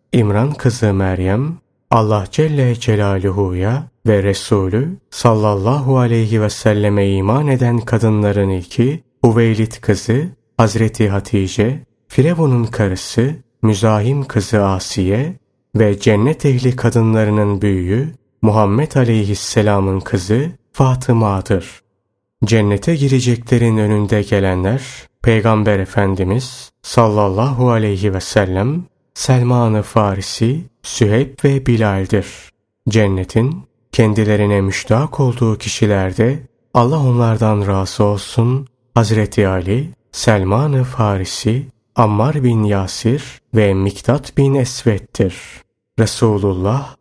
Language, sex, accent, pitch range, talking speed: Turkish, male, native, 105-130 Hz, 90 wpm